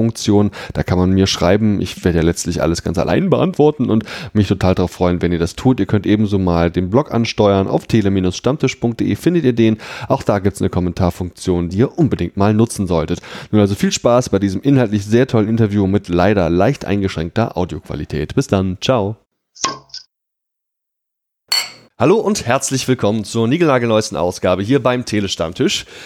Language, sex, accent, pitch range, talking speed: German, male, German, 100-130 Hz, 175 wpm